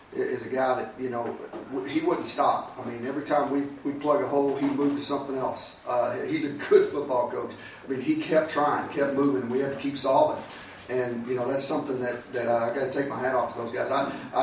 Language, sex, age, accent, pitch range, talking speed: English, male, 40-59, American, 125-140 Hz, 260 wpm